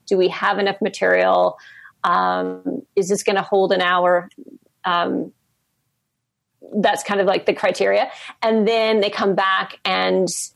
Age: 40-59